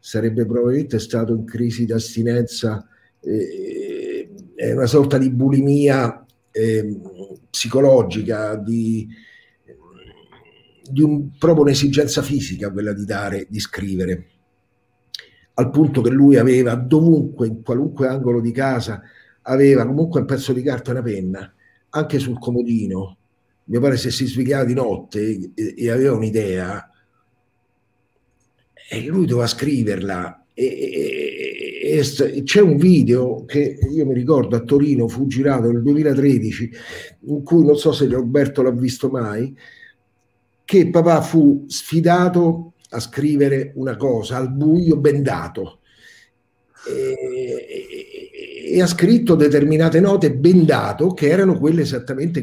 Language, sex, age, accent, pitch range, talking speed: Italian, male, 50-69, native, 120-155 Hz, 130 wpm